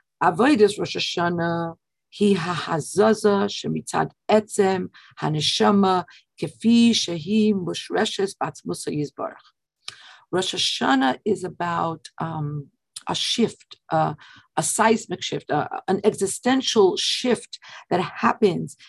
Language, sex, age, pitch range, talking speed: English, female, 50-69, 190-265 Hz, 55 wpm